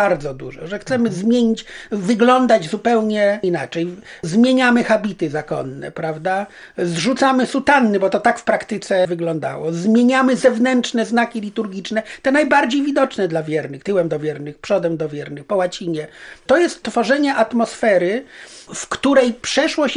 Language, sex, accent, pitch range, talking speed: Polish, male, native, 195-250 Hz, 130 wpm